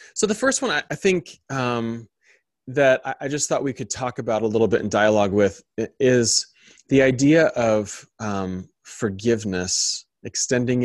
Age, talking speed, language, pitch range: 20-39, 155 wpm, English, 105-135 Hz